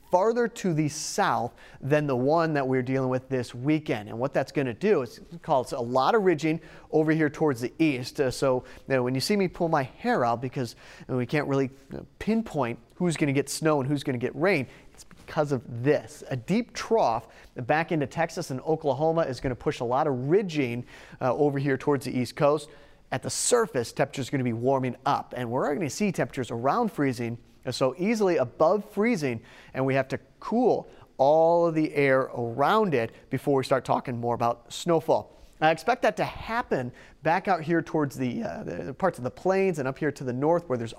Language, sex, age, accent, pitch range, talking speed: English, male, 30-49, American, 130-165 Hz, 205 wpm